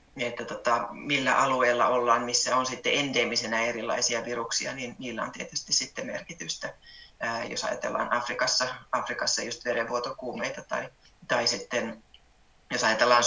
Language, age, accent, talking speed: Finnish, 30-49, native, 120 wpm